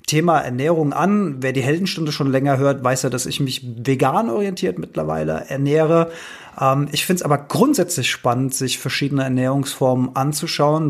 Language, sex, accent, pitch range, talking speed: German, male, German, 135-165 Hz, 155 wpm